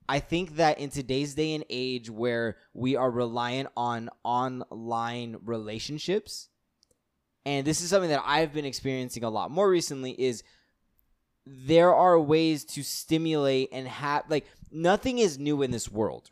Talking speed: 155 wpm